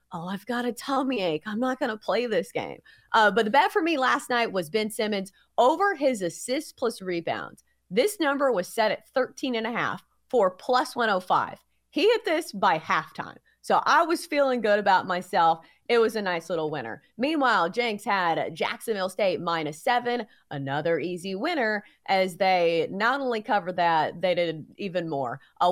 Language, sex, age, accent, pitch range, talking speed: English, female, 30-49, American, 165-250 Hz, 185 wpm